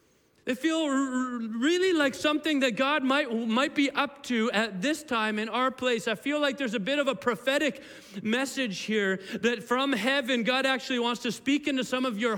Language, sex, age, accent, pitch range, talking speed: Russian, male, 40-59, American, 205-270 Hz, 205 wpm